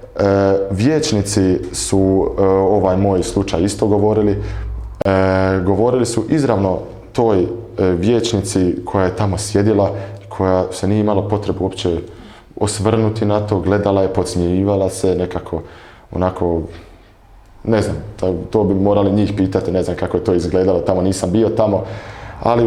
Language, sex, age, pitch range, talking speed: Croatian, male, 20-39, 95-115 Hz, 145 wpm